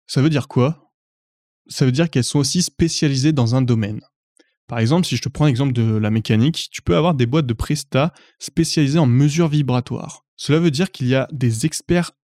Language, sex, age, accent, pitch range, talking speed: French, male, 20-39, French, 125-155 Hz, 210 wpm